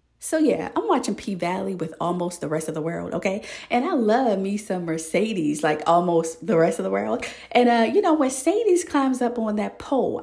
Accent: American